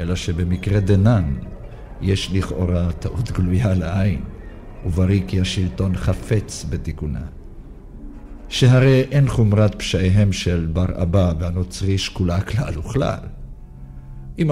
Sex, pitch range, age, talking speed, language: male, 85-100 Hz, 50-69, 105 wpm, Hebrew